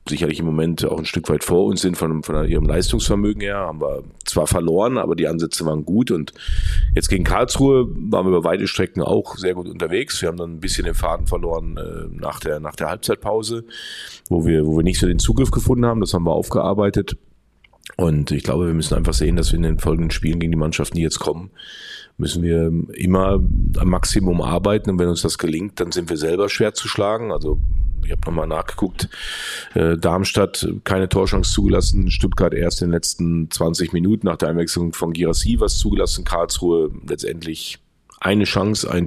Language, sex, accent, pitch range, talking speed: German, male, German, 80-95 Hz, 195 wpm